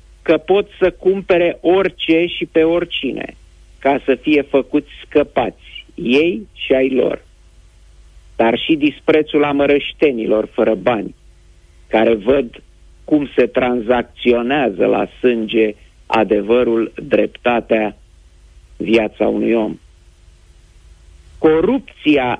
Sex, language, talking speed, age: male, Romanian, 95 wpm, 50-69